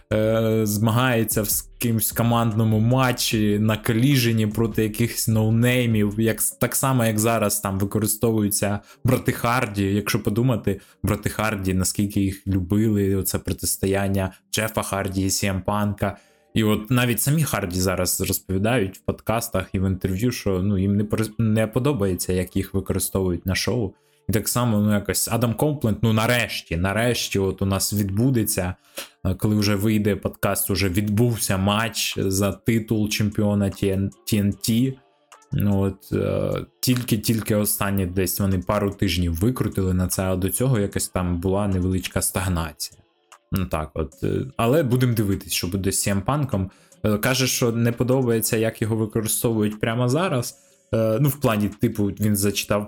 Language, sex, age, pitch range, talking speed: Ukrainian, male, 20-39, 95-115 Hz, 140 wpm